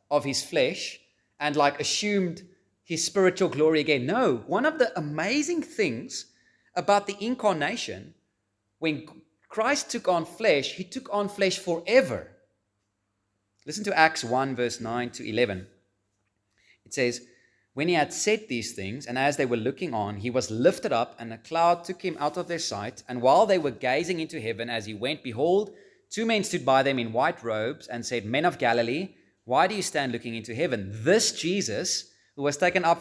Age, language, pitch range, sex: 30-49, English, 115-190 Hz, male